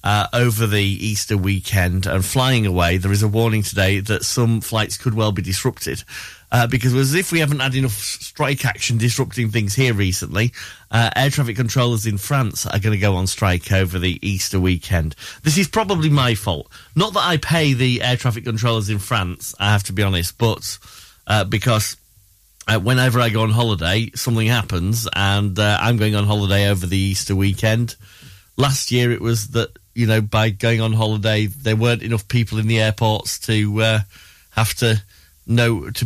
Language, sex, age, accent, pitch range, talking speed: English, male, 30-49, British, 100-120 Hz, 195 wpm